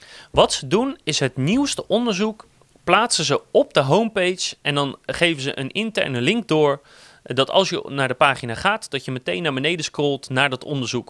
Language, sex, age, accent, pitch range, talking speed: Dutch, male, 30-49, Dutch, 130-195 Hz, 195 wpm